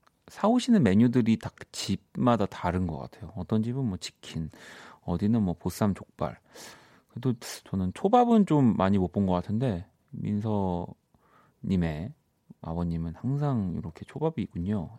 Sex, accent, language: male, native, Korean